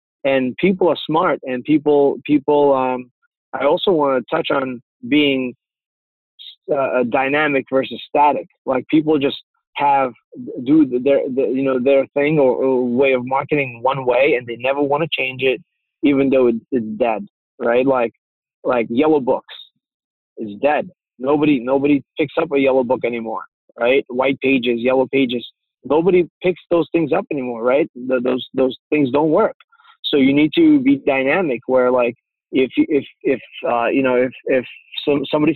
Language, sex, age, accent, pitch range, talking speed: English, male, 20-39, American, 125-150 Hz, 165 wpm